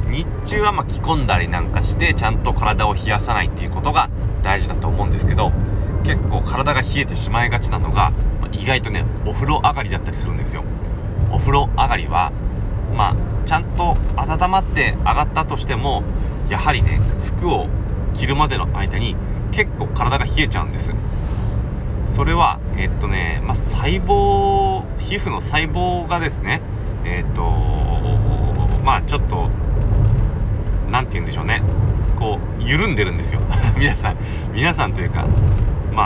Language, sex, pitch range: Japanese, male, 100-110 Hz